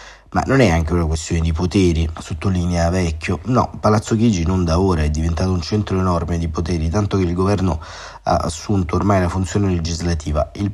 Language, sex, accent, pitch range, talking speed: Italian, male, native, 85-100 Hz, 195 wpm